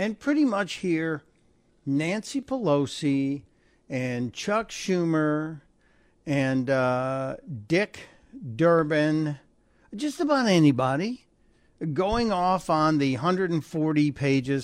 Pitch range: 135-180 Hz